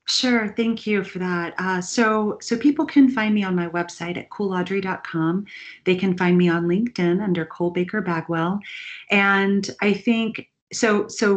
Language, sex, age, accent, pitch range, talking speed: English, female, 40-59, American, 170-195 Hz, 170 wpm